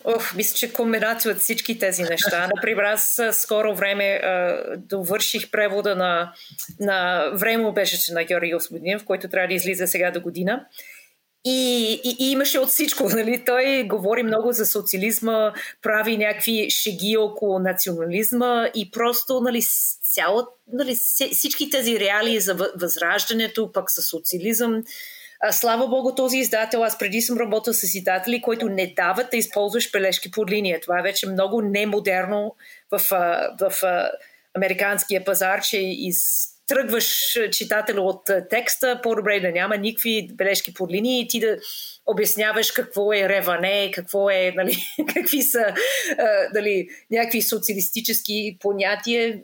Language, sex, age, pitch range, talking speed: Bulgarian, female, 30-49, 195-235 Hz, 140 wpm